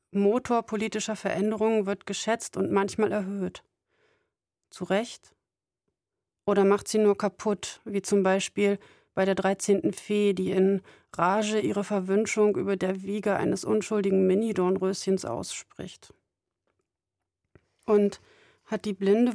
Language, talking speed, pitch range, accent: German, 120 wpm, 190-220 Hz, German